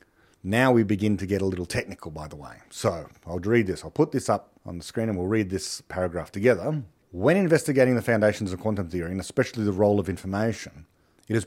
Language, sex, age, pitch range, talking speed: English, male, 40-59, 95-130 Hz, 225 wpm